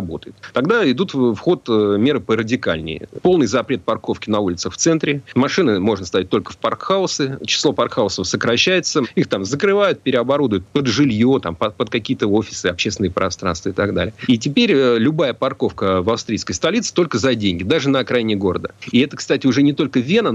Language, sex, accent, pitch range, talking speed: Russian, male, native, 100-140 Hz, 175 wpm